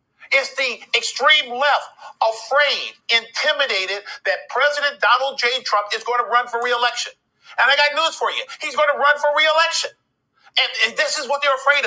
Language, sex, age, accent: English, male, 50-69, American